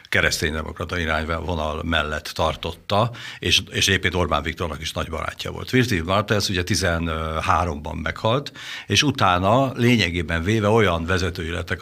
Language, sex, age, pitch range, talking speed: Hungarian, male, 60-79, 85-105 Hz, 120 wpm